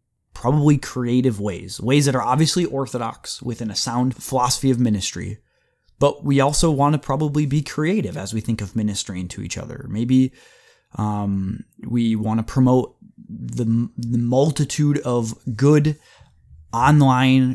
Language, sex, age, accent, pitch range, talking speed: English, male, 20-39, American, 110-135 Hz, 145 wpm